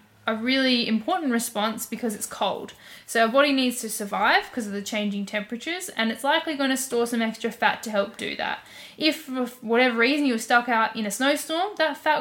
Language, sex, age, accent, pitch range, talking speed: English, female, 10-29, Australian, 210-250 Hz, 205 wpm